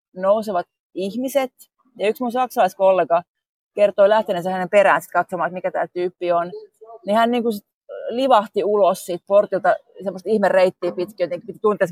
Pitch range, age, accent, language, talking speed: 185-225 Hz, 30-49, native, Finnish, 140 wpm